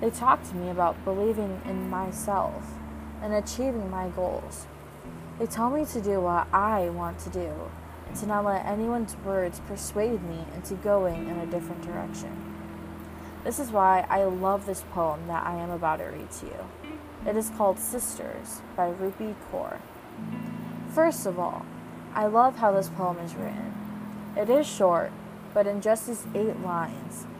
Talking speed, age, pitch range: 170 wpm, 20-39, 175-215 Hz